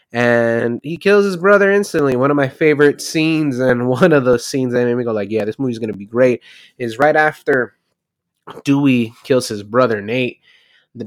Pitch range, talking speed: 110-140 Hz, 195 wpm